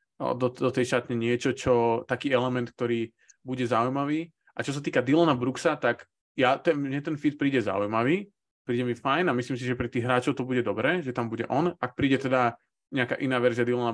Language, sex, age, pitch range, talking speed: Slovak, male, 20-39, 115-135 Hz, 210 wpm